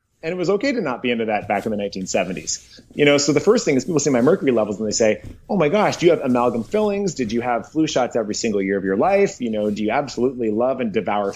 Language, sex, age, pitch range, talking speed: English, male, 30-49, 100-130 Hz, 290 wpm